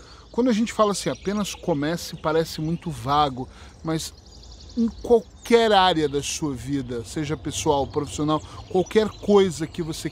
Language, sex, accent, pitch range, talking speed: Portuguese, male, Brazilian, 155-210 Hz, 140 wpm